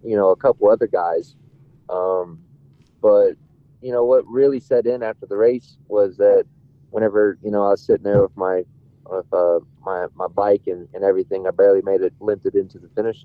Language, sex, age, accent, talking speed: English, male, 20-39, American, 205 wpm